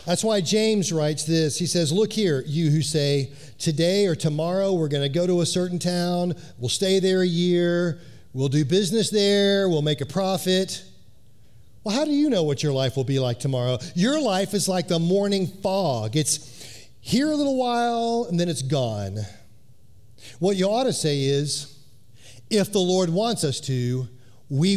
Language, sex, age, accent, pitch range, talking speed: English, male, 40-59, American, 120-175 Hz, 185 wpm